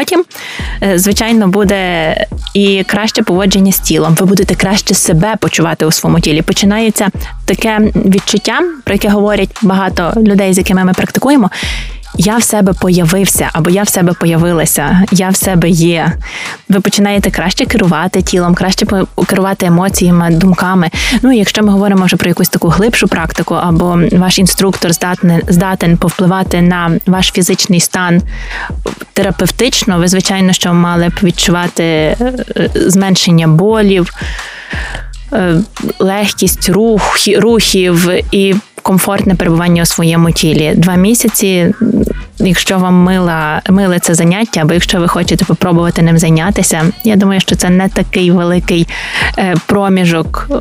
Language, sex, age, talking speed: Ukrainian, female, 20-39, 135 wpm